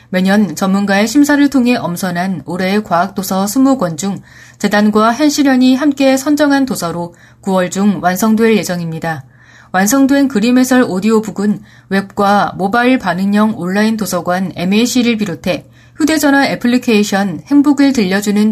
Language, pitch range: Korean, 180-240 Hz